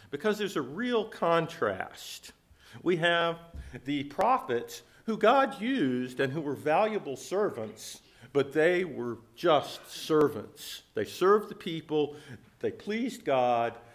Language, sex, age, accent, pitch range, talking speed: English, male, 50-69, American, 115-160 Hz, 125 wpm